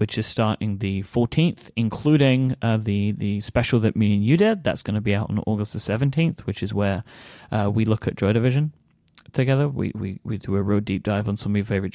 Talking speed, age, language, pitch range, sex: 235 wpm, 30-49, English, 105-130 Hz, male